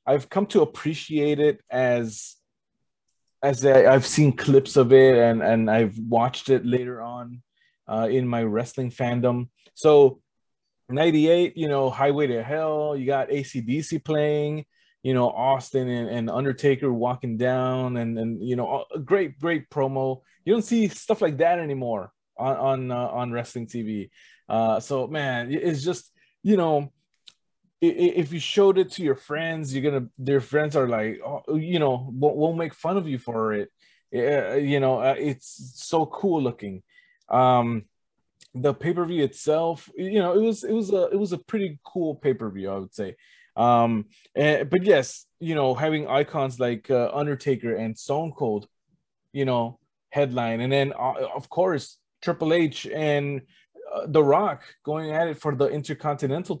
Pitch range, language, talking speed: 125-155 Hz, English, 170 wpm